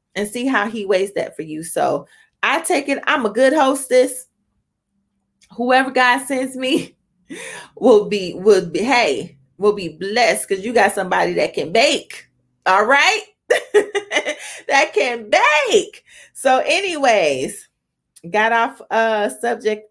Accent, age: American, 30-49